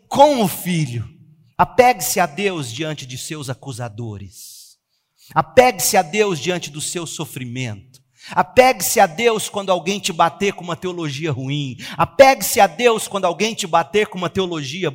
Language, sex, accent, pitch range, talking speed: Portuguese, male, Brazilian, 130-200 Hz, 155 wpm